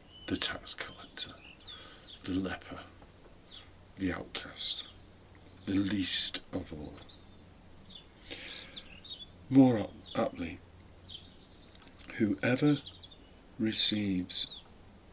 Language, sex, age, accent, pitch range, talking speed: English, male, 50-69, British, 90-105 Hz, 60 wpm